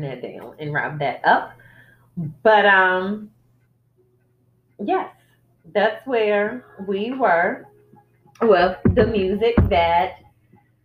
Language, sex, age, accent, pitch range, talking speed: English, female, 30-49, American, 145-205 Hz, 95 wpm